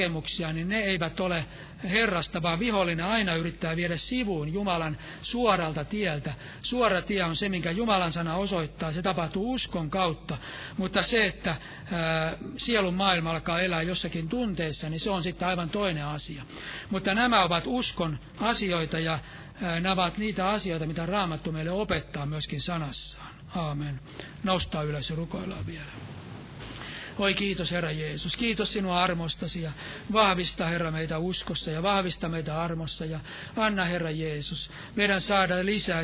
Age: 60-79